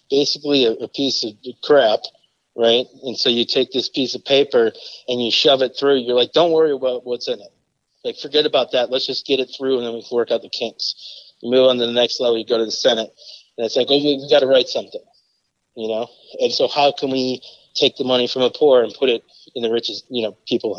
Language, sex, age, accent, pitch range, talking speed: English, male, 30-49, American, 115-150 Hz, 250 wpm